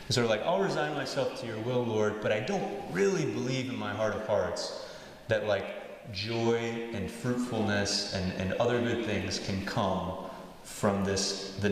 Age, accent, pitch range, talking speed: 30-49, American, 100-125 Hz, 180 wpm